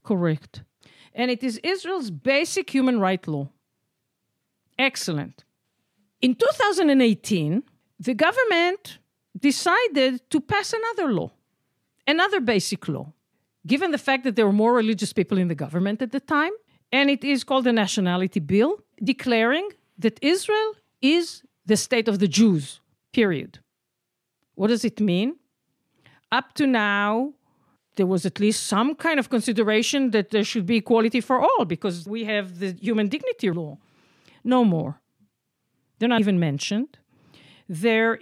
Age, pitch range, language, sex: 50-69, 190-270 Hz, English, female